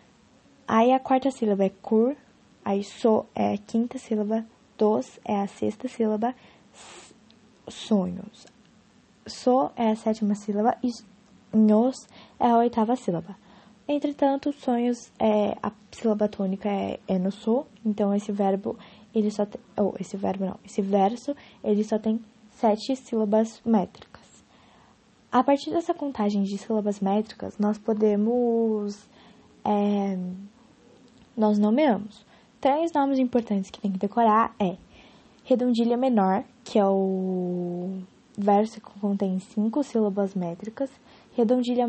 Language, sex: English, female